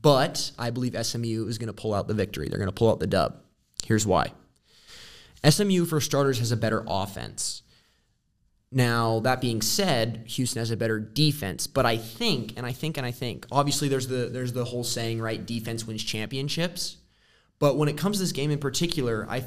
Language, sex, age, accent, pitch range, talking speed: English, male, 20-39, American, 115-140 Hz, 205 wpm